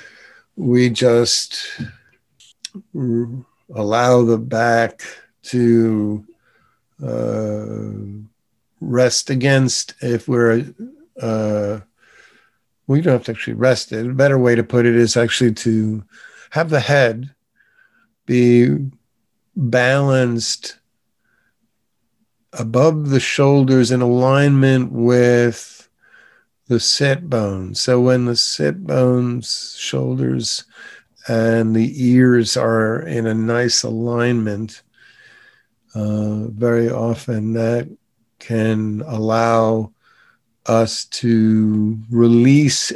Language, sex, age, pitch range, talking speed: English, male, 50-69, 110-125 Hz, 90 wpm